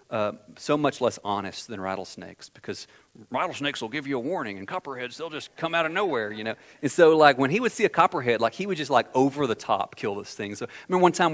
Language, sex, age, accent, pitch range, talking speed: English, male, 40-59, American, 120-155 Hz, 260 wpm